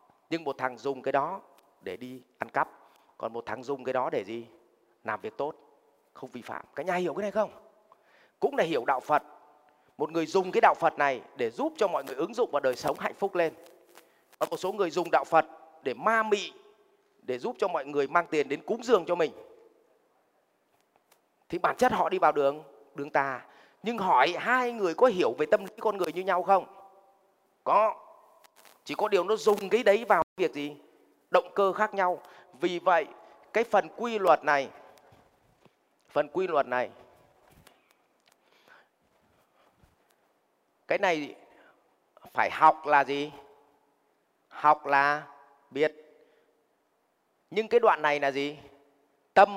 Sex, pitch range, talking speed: male, 140-205 Hz, 170 wpm